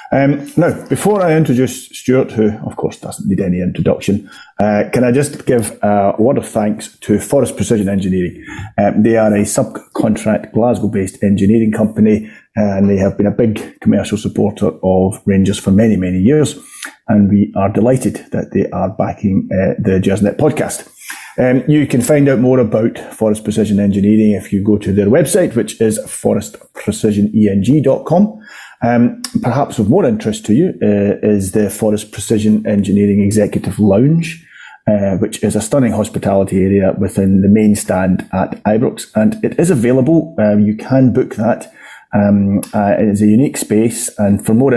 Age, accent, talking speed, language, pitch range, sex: 30-49, British, 170 wpm, English, 100-115 Hz, male